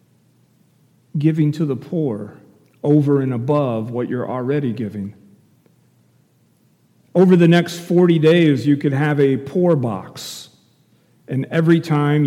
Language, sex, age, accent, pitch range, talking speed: English, male, 40-59, American, 120-150 Hz, 120 wpm